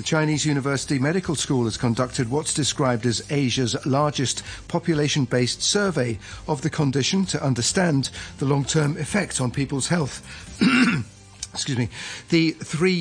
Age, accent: 40-59, British